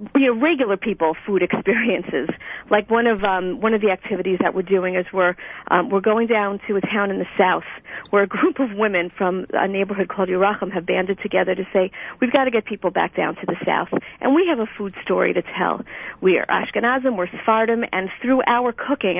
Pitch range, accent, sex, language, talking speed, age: 195-240 Hz, American, female, English, 230 wpm, 50-69